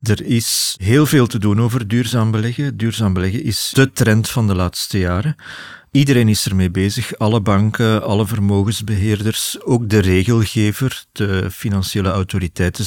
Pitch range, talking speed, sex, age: 100-115 Hz, 150 wpm, male, 50-69